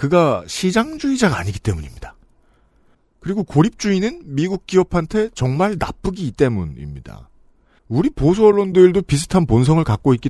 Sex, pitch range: male, 110-175 Hz